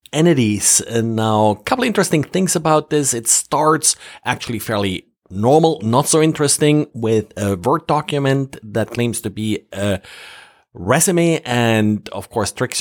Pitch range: 110-145 Hz